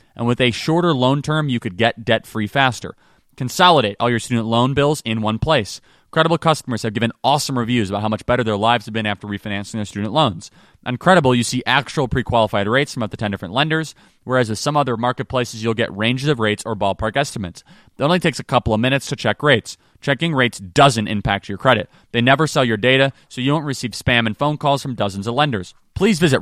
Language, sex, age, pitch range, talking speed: English, male, 30-49, 110-145 Hz, 225 wpm